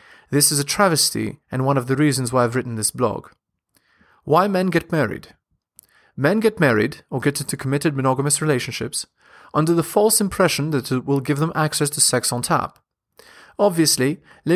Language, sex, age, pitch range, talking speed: English, male, 30-49, 130-165 Hz, 175 wpm